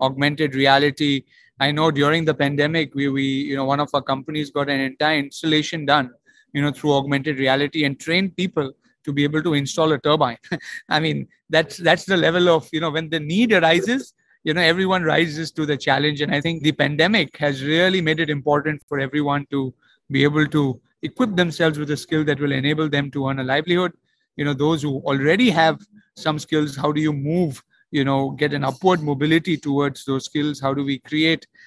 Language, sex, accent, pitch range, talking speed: English, male, Indian, 145-165 Hz, 205 wpm